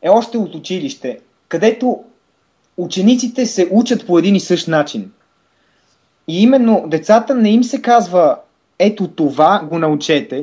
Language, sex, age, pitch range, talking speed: Bulgarian, male, 20-39, 155-225 Hz, 140 wpm